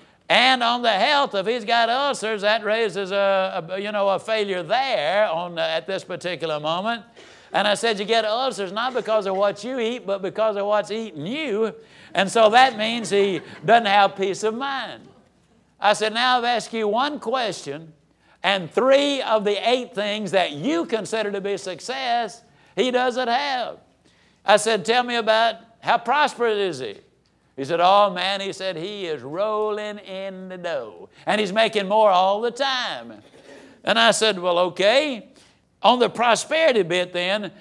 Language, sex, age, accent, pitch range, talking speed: English, male, 60-79, American, 195-240 Hz, 180 wpm